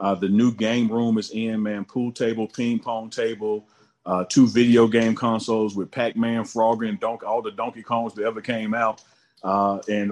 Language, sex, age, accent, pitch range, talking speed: English, male, 40-59, American, 100-115 Hz, 195 wpm